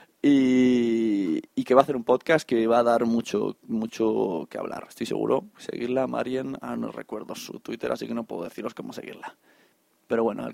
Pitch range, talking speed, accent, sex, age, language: 120-165 Hz, 200 wpm, Spanish, male, 20-39, English